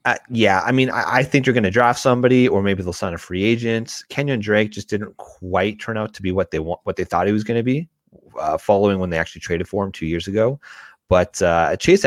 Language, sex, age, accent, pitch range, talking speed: English, male, 30-49, American, 95-125 Hz, 265 wpm